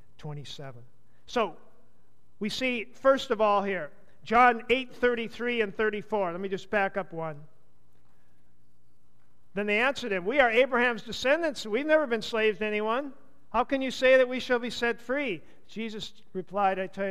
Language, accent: English, American